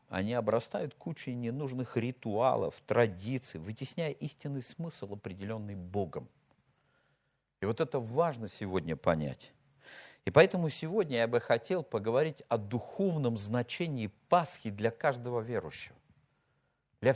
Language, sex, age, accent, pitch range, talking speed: Russian, male, 50-69, native, 105-150 Hz, 110 wpm